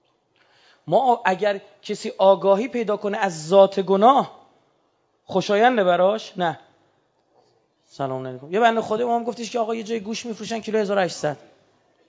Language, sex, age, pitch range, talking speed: Persian, male, 30-49, 160-235 Hz, 135 wpm